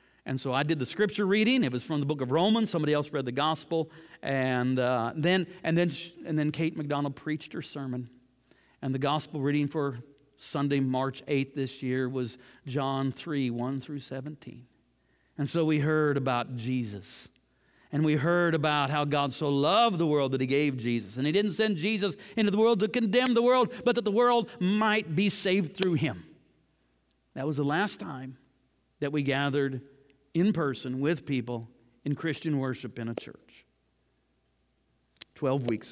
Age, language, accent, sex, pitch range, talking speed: 50-69, English, American, male, 130-175 Hz, 180 wpm